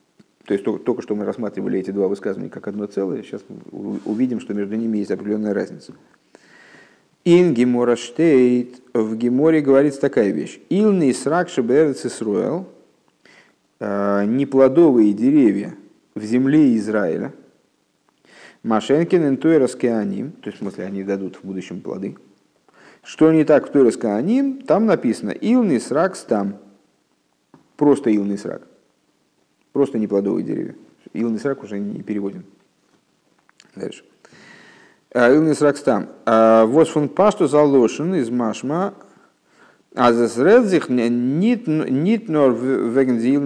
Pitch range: 105-145 Hz